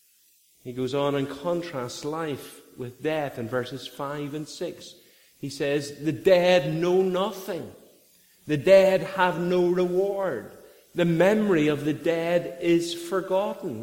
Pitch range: 145-195 Hz